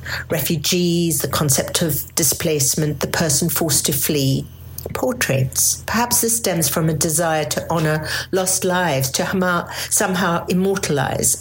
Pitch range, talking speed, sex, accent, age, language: 140-190 Hz, 125 wpm, female, British, 50-69, English